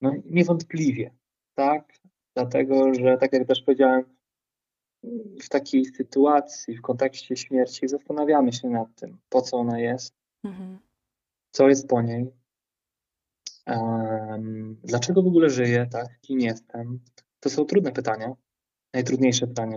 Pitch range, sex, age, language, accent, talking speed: 115-135 Hz, male, 20-39, Polish, native, 125 wpm